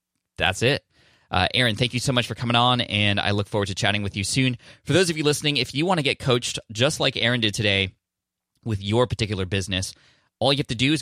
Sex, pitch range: male, 100-120 Hz